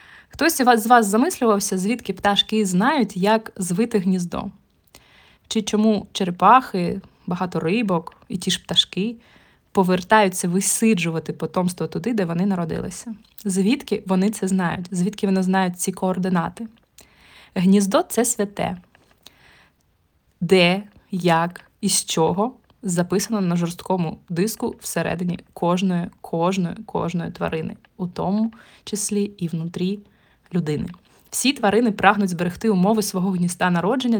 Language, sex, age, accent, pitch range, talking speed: Ukrainian, female, 20-39, native, 180-215 Hz, 115 wpm